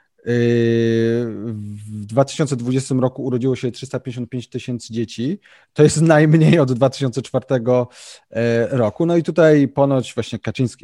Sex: male